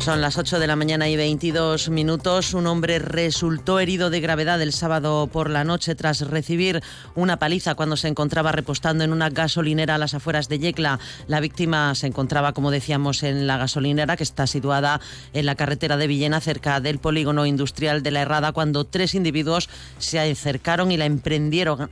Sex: female